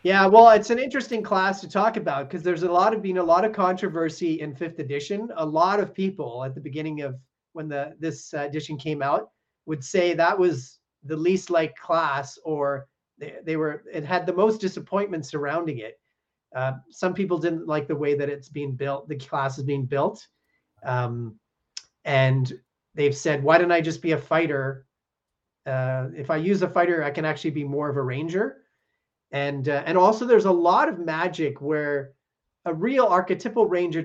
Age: 30-49